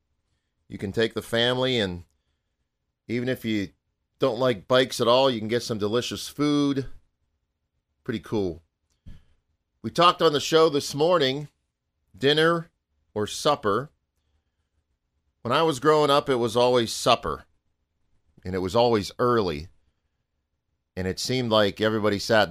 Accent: American